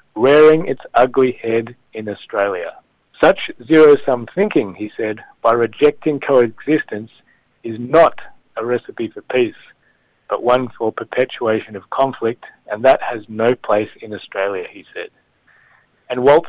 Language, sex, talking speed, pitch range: English, male, 135 wpm, 115-145 Hz